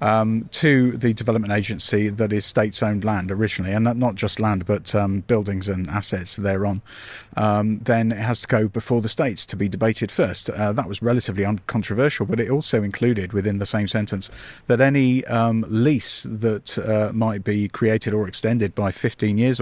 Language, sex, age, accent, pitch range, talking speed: English, male, 40-59, British, 105-120 Hz, 185 wpm